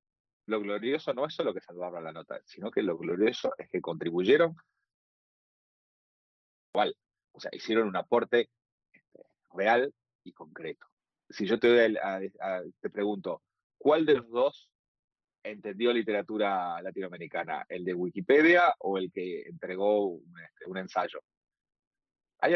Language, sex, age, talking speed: Spanish, male, 30-49, 140 wpm